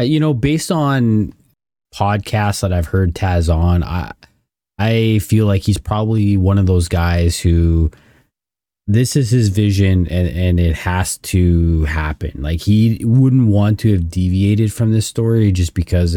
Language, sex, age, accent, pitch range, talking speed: English, male, 30-49, American, 85-105 Hz, 160 wpm